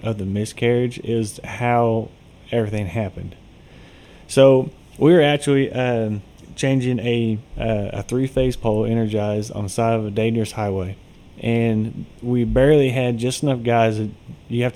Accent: American